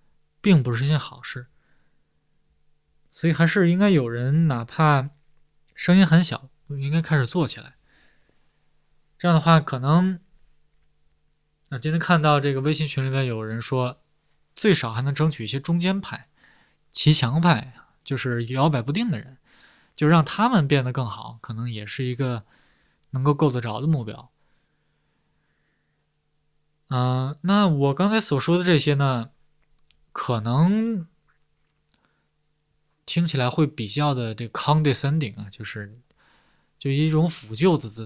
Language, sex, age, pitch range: Chinese, male, 20-39, 125-160 Hz